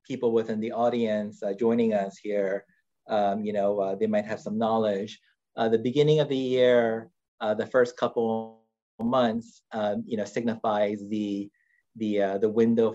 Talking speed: 175 wpm